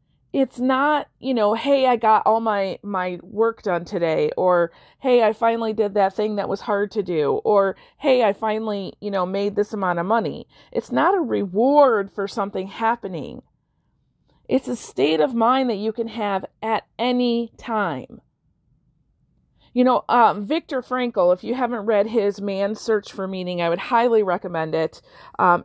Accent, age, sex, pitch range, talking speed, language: American, 40-59, female, 190-235 Hz, 175 wpm, English